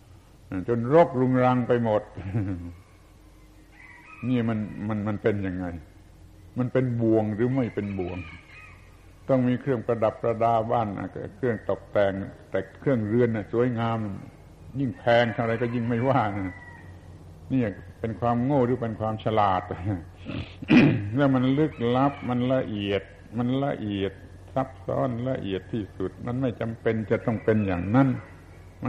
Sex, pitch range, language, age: male, 95-125 Hz, Thai, 60-79